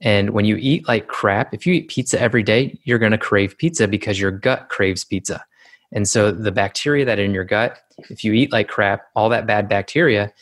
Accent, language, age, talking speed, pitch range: American, English, 20-39, 230 wpm, 100-115 Hz